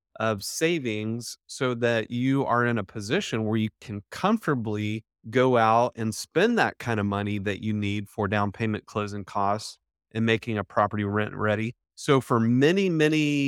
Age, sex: 30-49, male